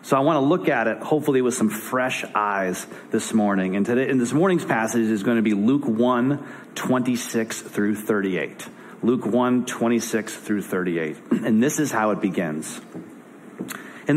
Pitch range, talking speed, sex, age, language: 110-145 Hz, 175 wpm, male, 40-59, English